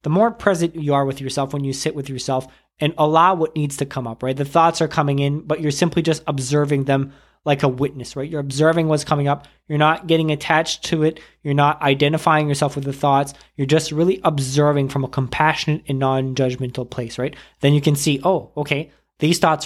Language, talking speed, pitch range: English, 220 wpm, 135-155 Hz